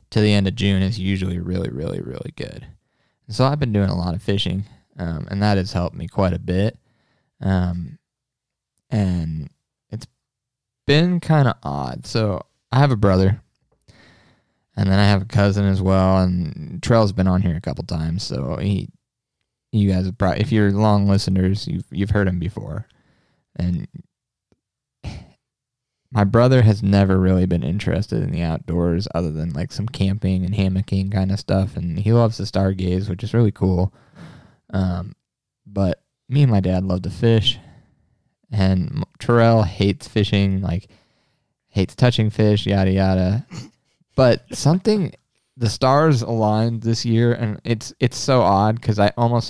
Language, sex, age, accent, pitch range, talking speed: English, male, 20-39, American, 95-115 Hz, 165 wpm